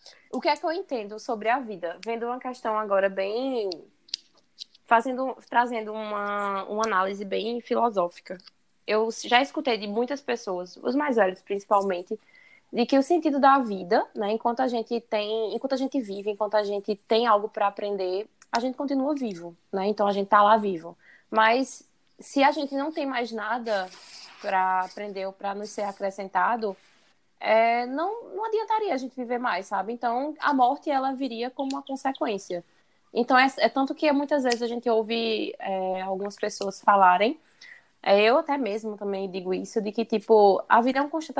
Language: Portuguese